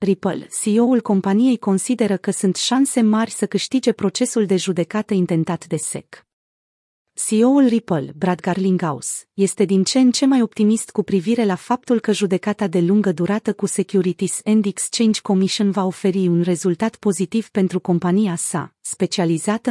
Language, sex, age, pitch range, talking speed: Romanian, female, 30-49, 180-225 Hz, 150 wpm